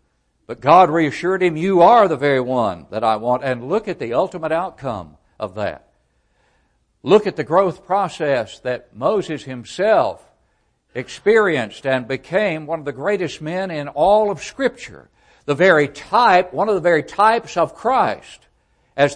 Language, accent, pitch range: English, American, 105-165 Hz